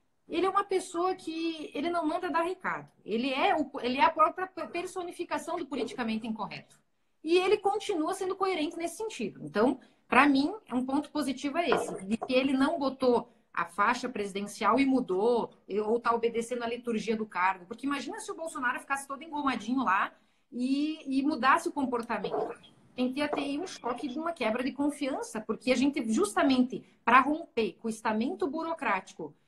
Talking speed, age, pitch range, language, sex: 175 wpm, 30-49, 245-335 Hz, Portuguese, female